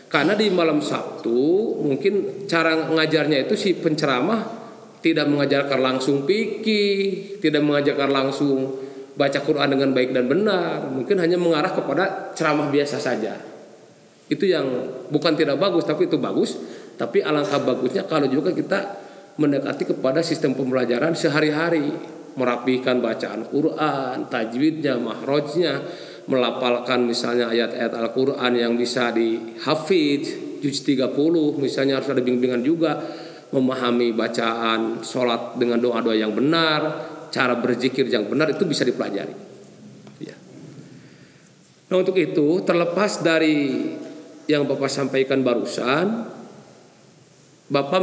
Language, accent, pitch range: Indonesian, native, 130-165 Hz